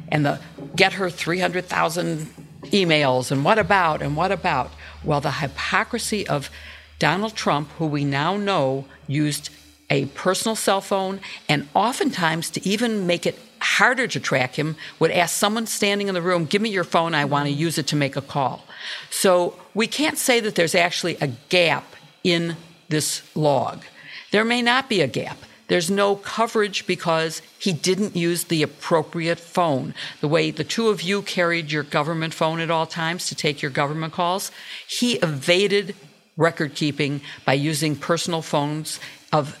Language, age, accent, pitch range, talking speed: English, 50-69, American, 150-190 Hz, 170 wpm